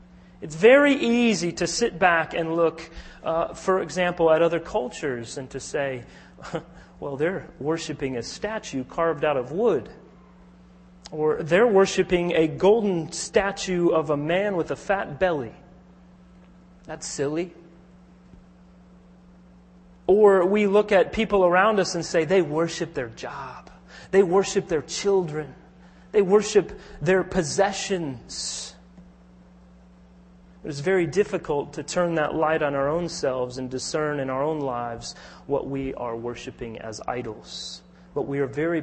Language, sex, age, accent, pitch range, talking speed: English, male, 30-49, American, 130-180 Hz, 140 wpm